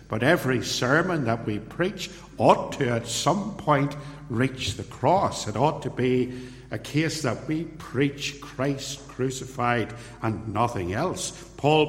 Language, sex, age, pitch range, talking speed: English, male, 60-79, 110-140 Hz, 145 wpm